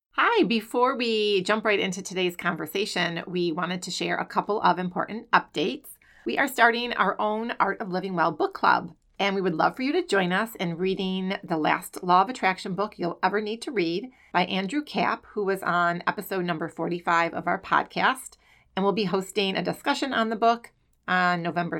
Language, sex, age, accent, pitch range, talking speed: English, female, 30-49, American, 175-215 Hz, 200 wpm